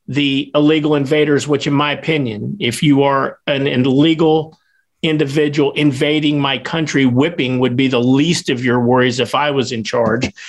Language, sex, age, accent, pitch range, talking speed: English, male, 50-69, American, 135-170 Hz, 170 wpm